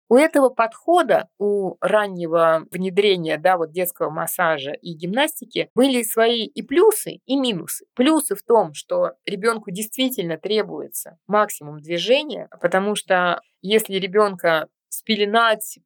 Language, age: Russian, 20-39